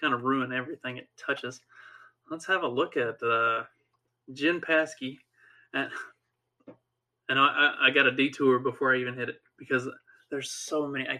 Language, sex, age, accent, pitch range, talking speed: English, male, 20-39, American, 125-155 Hz, 165 wpm